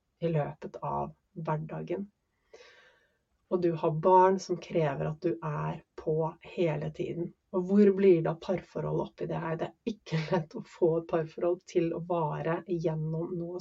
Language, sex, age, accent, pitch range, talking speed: English, female, 30-49, Swedish, 170-210 Hz, 160 wpm